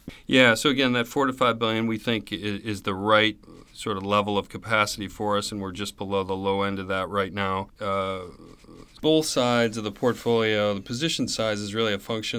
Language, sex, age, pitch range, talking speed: English, male, 40-59, 95-105 Hz, 220 wpm